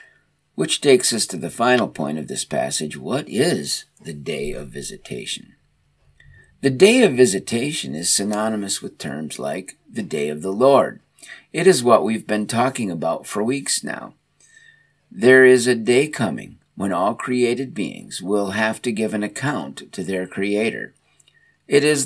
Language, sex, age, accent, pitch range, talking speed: English, male, 50-69, American, 95-135 Hz, 165 wpm